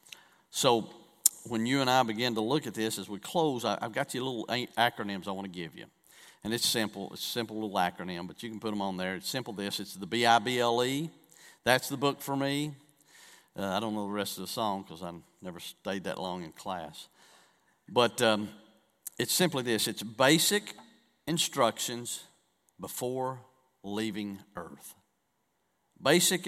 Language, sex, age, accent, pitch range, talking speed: English, male, 50-69, American, 105-140 Hz, 175 wpm